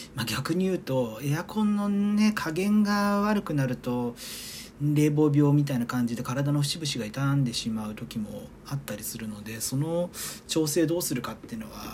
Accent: native